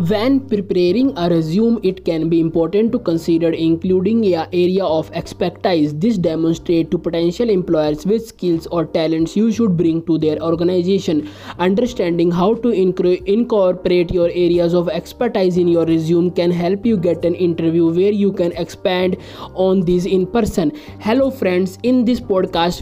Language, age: English, 20-39